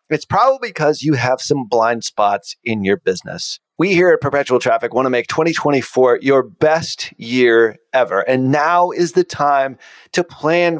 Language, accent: English, American